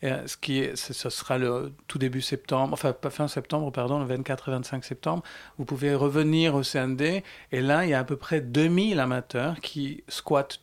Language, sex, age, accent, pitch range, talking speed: French, male, 40-59, French, 130-155 Hz, 190 wpm